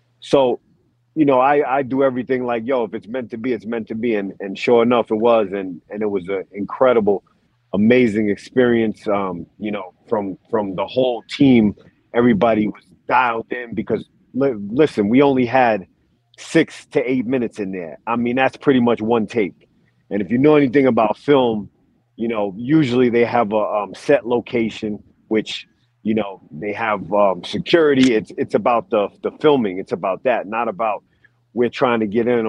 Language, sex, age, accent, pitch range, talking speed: English, male, 30-49, American, 105-120 Hz, 190 wpm